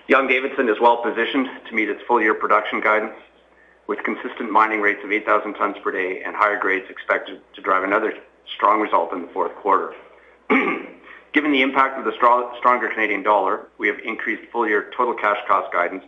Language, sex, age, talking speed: English, male, 50-69, 175 wpm